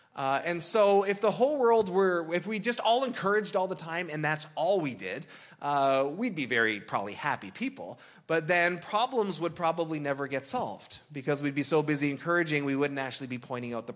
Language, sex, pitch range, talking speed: English, male, 140-190 Hz, 210 wpm